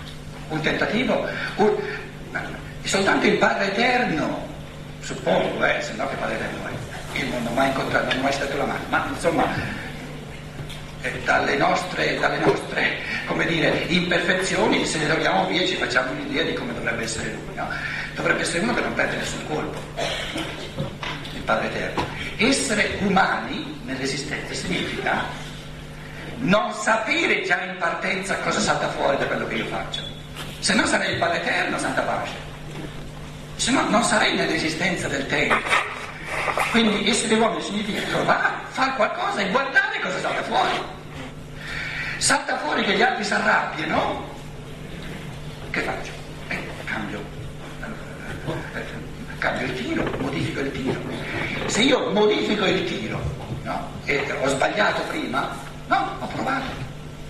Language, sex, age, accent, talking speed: Italian, male, 60-79, native, 145 wpm